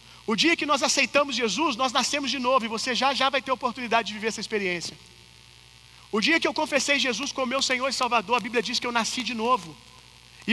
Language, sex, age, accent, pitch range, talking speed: Gujarati, male, 40-59, Brazilian, 200-260 Hz, 245 wpm